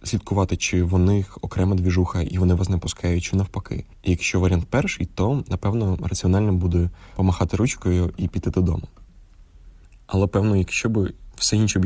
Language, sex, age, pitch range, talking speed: Ukrainian, male, 20-39, 90-100 Hz, 165 wpm